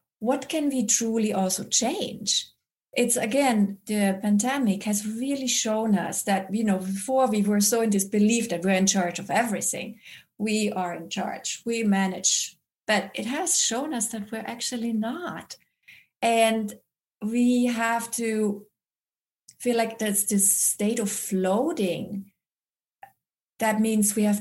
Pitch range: 195-230 Hz